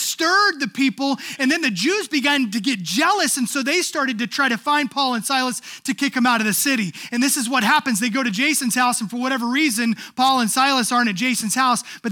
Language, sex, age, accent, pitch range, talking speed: English, male, 30-49, American, 210-275 Hz, 255 wpm